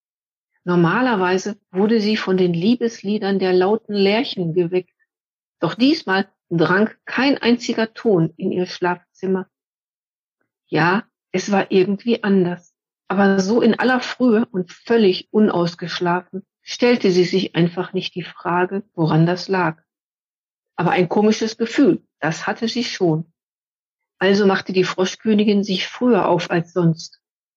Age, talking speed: 50-69, 130 wpm